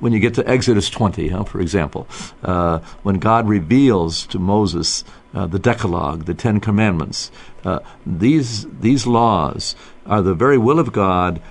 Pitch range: 95-125 Hz